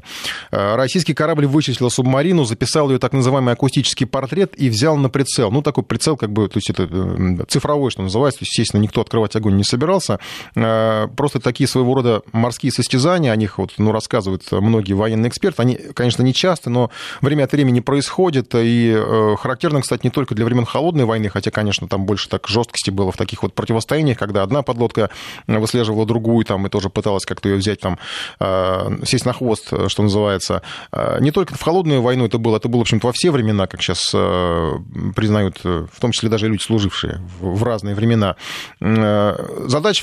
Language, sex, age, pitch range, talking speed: Russian, male, 20-39, 105-130 Hz, 180 wpm